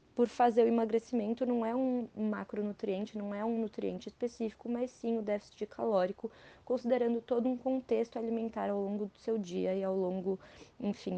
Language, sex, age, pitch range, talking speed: Portuguese, female, 20-39, 220-265 Hz, 170 wpm